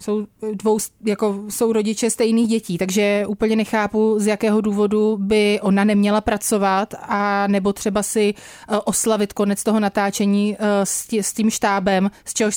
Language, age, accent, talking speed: Czech, 30-49, native, 145 wpm